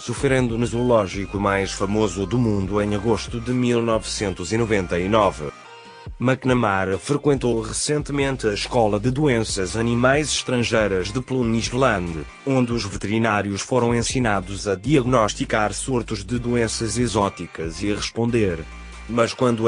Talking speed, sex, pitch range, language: 115 wpm, male, 105-130 Hz, Portuguese